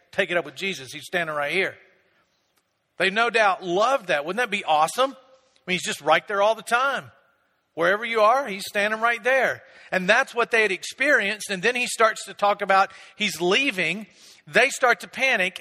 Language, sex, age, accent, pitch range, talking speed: English, male, 50-69, American, 175-225 Hz, 205 wpm